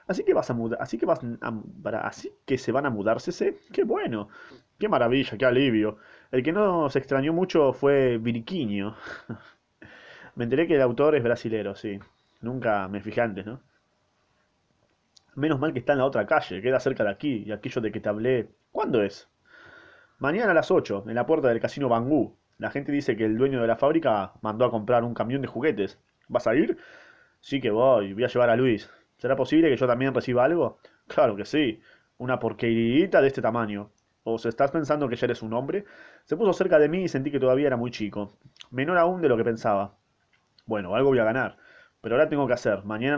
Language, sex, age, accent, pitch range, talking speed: Spanish, male, 20-39, Argentinian, 110-150 Hz, 215 wpm